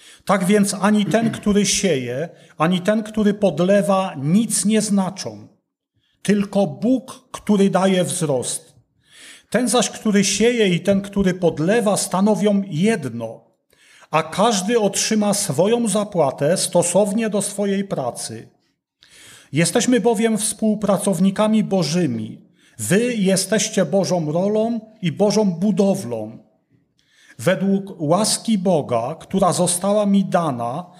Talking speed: 105 wpm